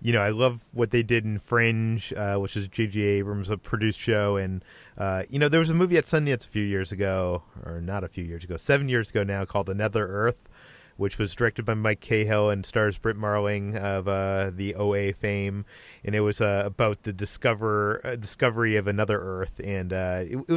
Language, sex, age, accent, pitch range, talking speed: English, male, 30-49, American, 105-120 Hz, 220 wpm